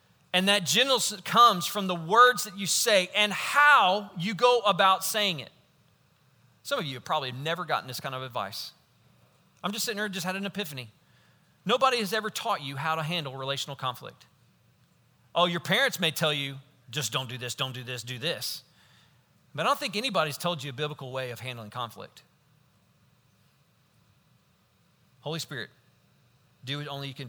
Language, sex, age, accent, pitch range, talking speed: English, male, 40-59, American, 130-180 Hz, 180 wpm